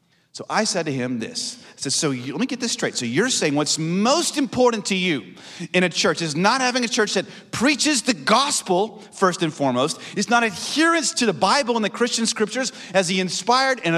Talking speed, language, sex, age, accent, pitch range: 220 wpm, English, male, 40-59, American, 170-245 Hz